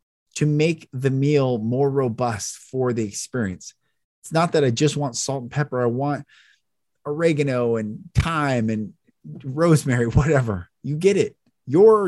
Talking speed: 150 wpm